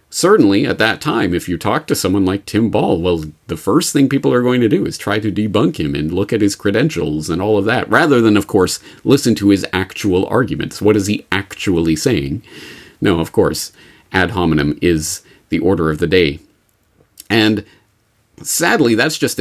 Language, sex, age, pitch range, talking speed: English, male, 40-59, 90-110 Hz, 200 wpm